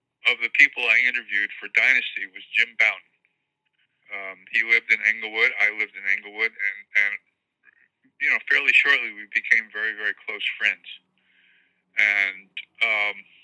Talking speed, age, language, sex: 145 wpm, 40-59, English, male